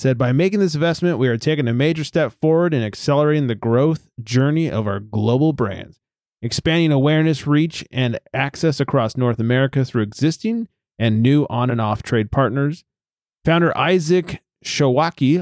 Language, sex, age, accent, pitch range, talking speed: English, male, 30-49, American, 115-150 Hz, 150 wpm